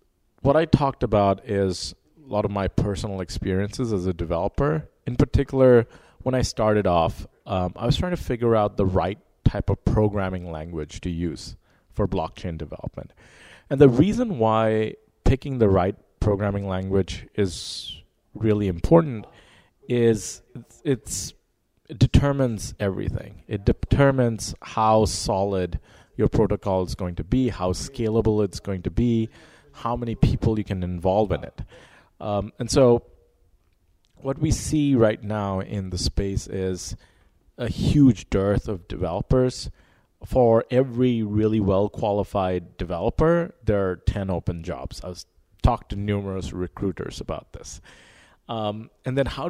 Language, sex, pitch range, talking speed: English, male, 95-125 Hz, 140 wpm